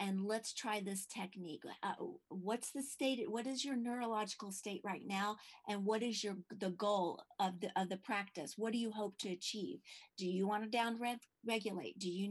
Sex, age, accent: female, 40-59, American